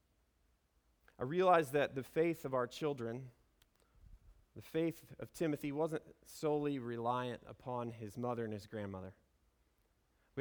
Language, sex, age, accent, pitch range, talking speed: English, male, 30-49, American, 105-150 Hz, 125 wpm